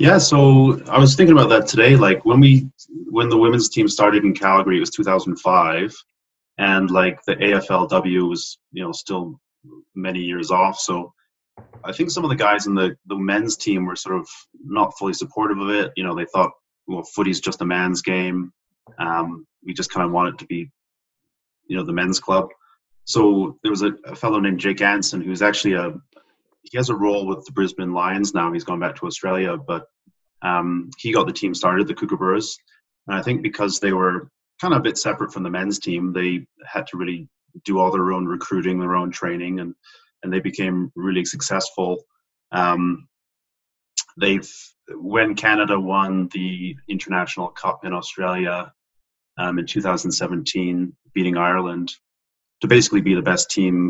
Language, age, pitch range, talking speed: English, 30-49, 90-105 Hz, 185 wpm